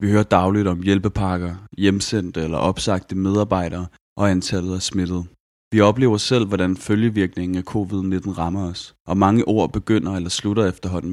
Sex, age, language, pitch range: male, 30-49, Danish, 90-105 Hz